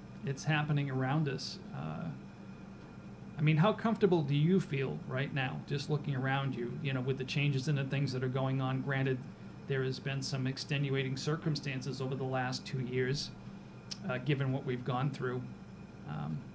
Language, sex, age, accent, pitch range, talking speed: English, male, 40-59, American, 130-155 Hz, 180 wpm